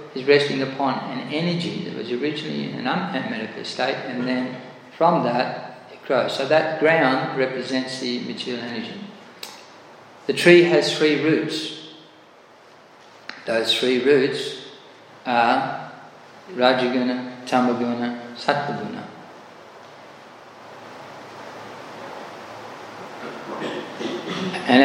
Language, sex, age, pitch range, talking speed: English, male, 40-59, 125-150 Hz, 90 wpm